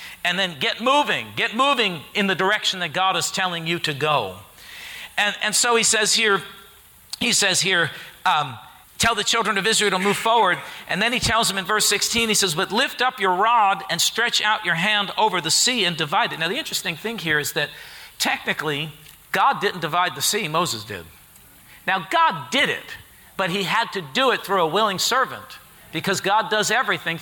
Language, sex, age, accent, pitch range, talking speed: English, male, 50-69, American, 170-225 Hz, 205 wpm